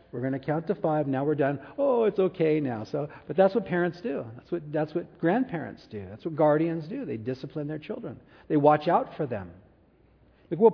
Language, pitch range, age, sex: English, 160-210 Hz, 50-69, male